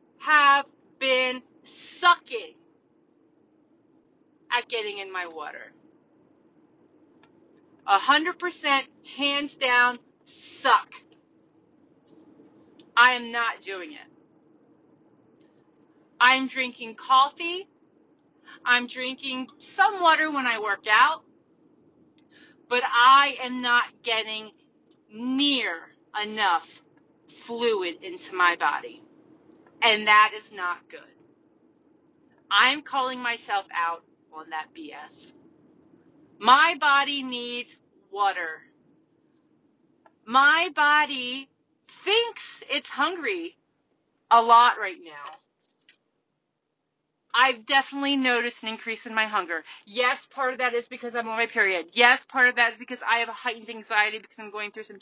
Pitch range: 225-315 Hz